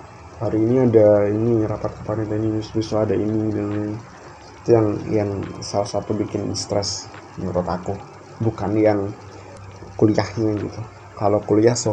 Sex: male